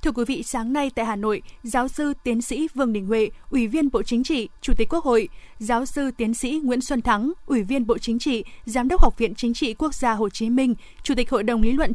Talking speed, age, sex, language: 265 wpm, 20-39, female, Vietnamese